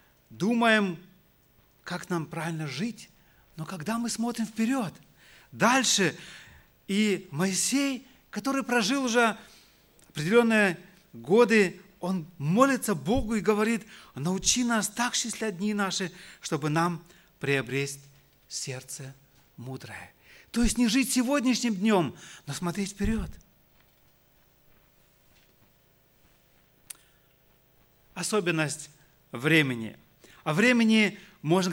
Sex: male